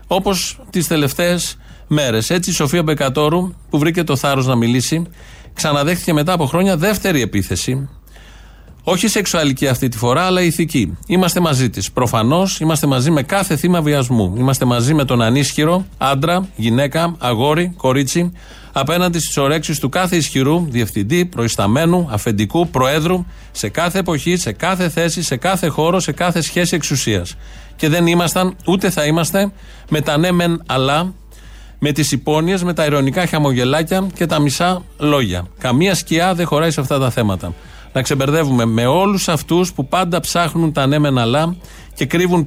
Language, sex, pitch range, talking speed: Greek, male, 130-175 Hz, 160 wpm